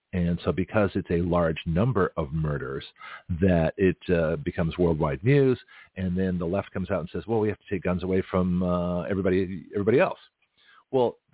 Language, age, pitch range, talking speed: English, 50-69, 95-115 Hz, 190 wpm